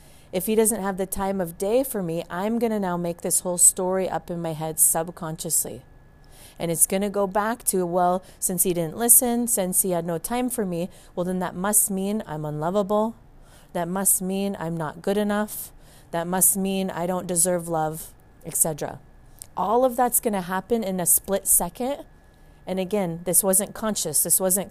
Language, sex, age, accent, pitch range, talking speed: English, female, 30-49, American, 165-195 Hz, 190 wpm